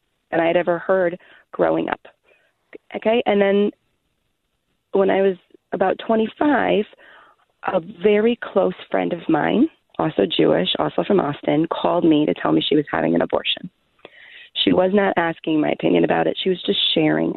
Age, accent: 30-49, American